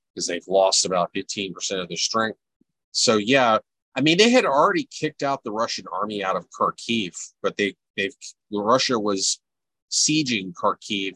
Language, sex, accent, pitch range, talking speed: English, male, American, 90-120 Hz, 160 wpm